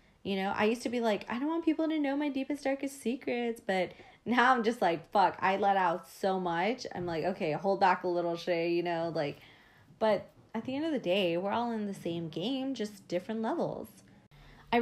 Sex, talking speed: female, 225 wpm